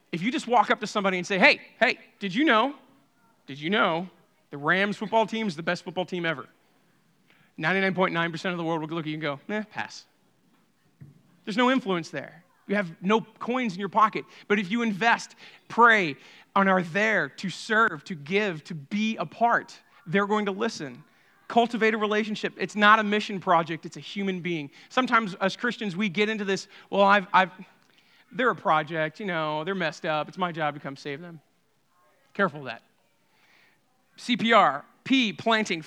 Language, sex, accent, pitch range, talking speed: English, male, American, 170-215 Hz, 190 wpm